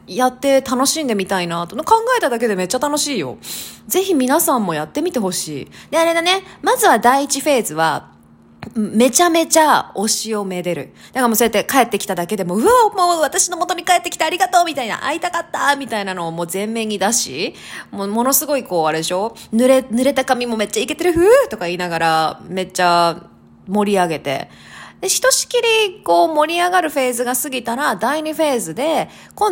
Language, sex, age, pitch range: Japanese, female, 20-39, 200-335 Hz